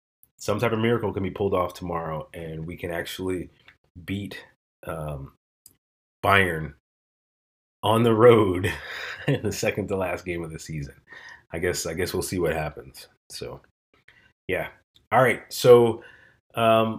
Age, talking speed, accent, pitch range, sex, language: 30-49, 140 wpm, American, 90-110 Hz, male, English